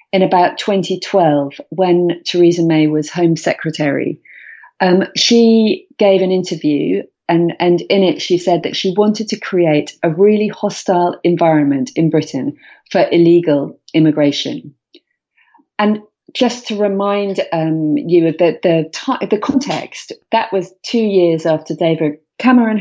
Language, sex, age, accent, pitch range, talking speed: English, female, 40-59, British, 165-210 Hz, 130 wpm